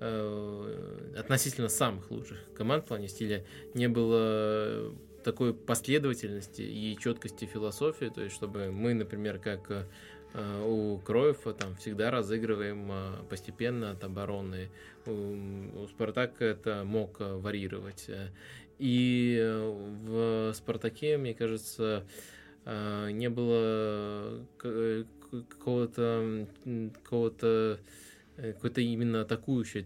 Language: Russian